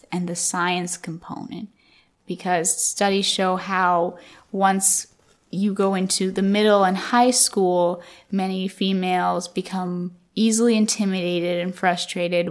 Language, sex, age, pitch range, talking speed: English, female, 10-29, 180-220 Hz, 115 wpm